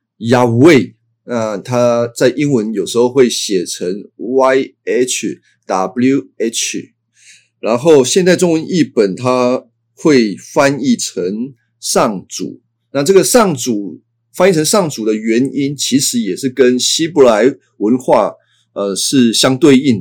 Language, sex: Chinese, male